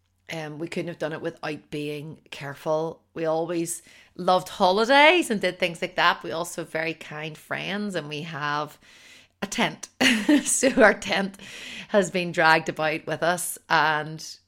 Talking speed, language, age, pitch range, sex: 160 wpm, English, 30-49, 150-175 Hz, female